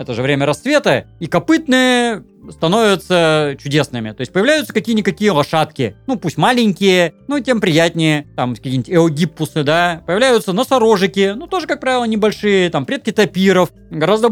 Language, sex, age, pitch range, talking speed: Russian, male, 30-49, 155-235 Hz, 145 wpm